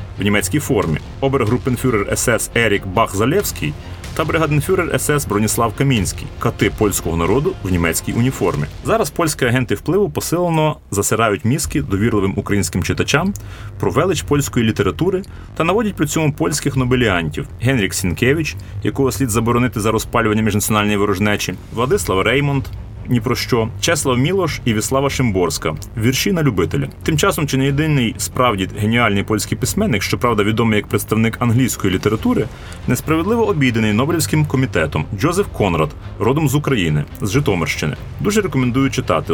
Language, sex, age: Ukrainian, male, 30-49